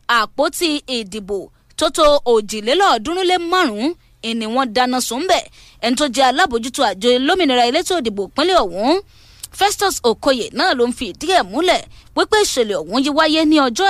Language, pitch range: English, 240-345 Hz